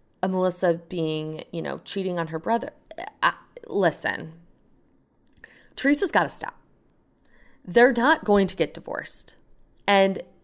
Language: English